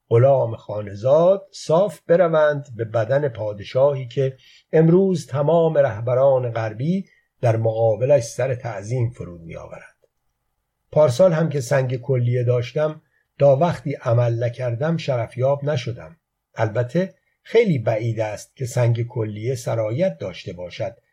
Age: 50-69